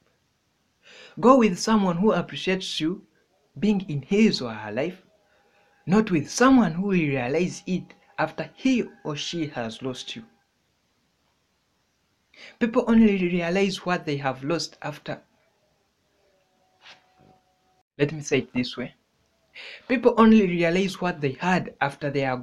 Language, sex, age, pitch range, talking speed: English, male, 60-79, 150-200 Hz, 130 wpm